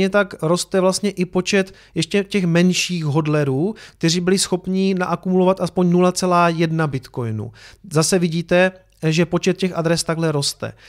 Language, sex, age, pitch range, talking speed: Czech, male, 30-49, 150-180 Hz, 130 wpm